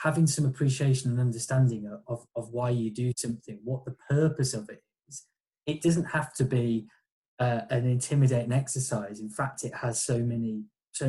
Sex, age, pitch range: male, 20-39, 120-145 Hz